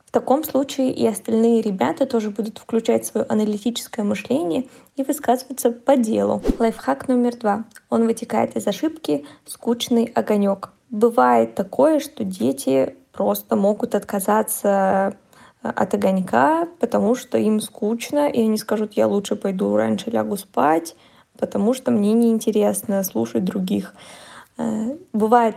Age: 20-39